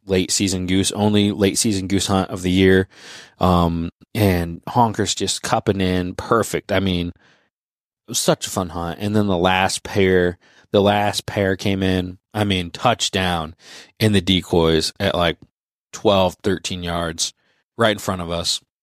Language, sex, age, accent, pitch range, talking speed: English, male, 20-39, American, 90-105 Hz, 165 wpm